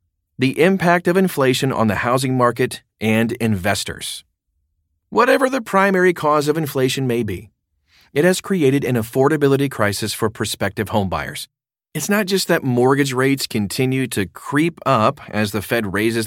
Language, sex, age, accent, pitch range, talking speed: English, male, 30-49, American, 105-135 Hz, 150 wpm